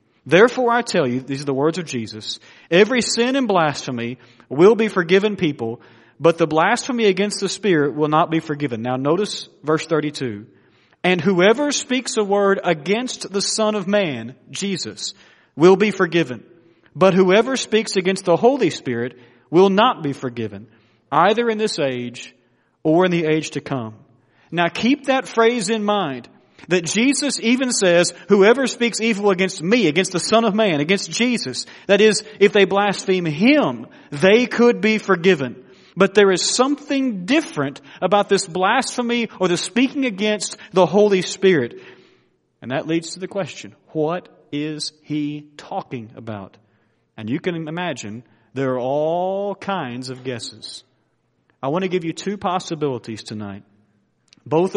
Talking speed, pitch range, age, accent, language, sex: 160 wpm, 135-205 Hz, 40-59, American, English, male